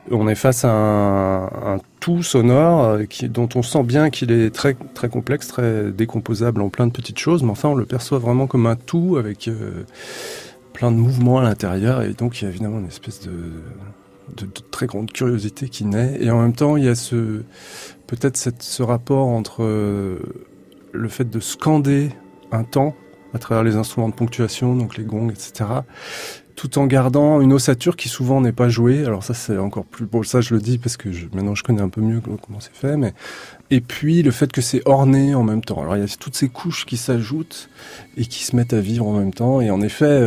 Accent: French